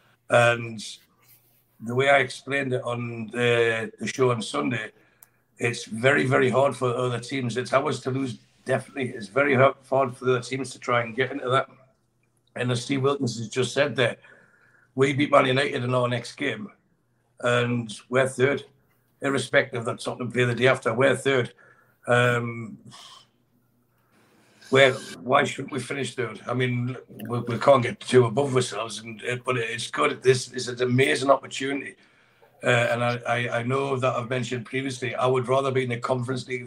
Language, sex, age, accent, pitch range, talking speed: English, male, 60-79, British, 120-130 Hz, 175 wpm